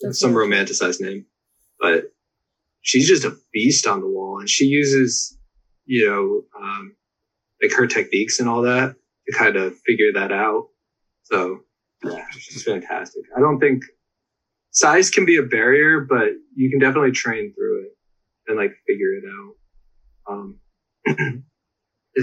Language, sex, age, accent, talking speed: English, male, 20-39, American, 150 wpm